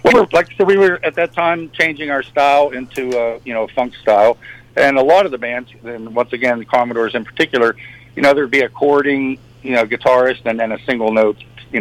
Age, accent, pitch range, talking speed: 60-79, American, 115-135 Hz, 235 wpm